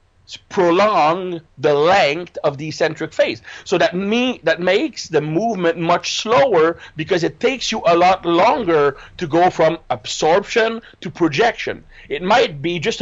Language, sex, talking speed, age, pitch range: English, male, 150 wpm, 50-69, 150-195 Hz